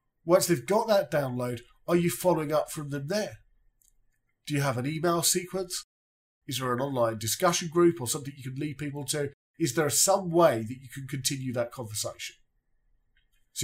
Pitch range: 120-165 Hz